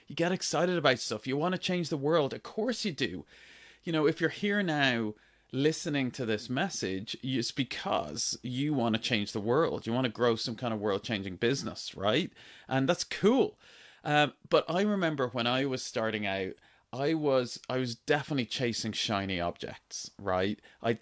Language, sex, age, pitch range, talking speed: English, male, 30-49, 110-160 Hz, 185 wpm